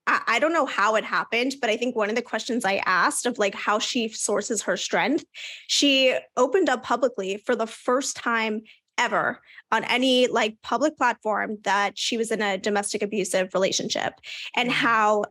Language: English